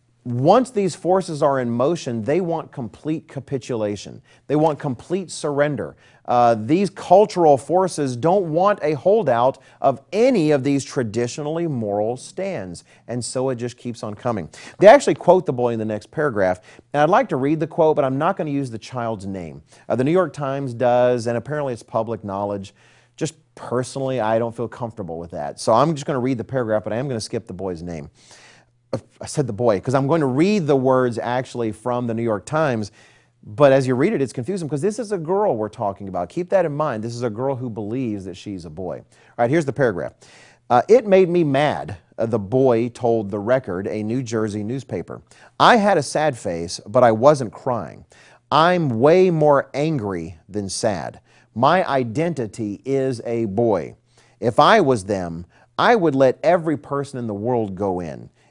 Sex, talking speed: male, 200 wpm